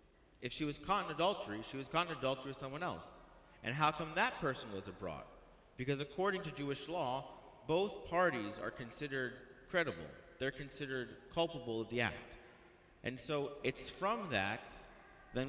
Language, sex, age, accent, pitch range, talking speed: English, male, 40-59, American, 115-155 Hz, 165 wpm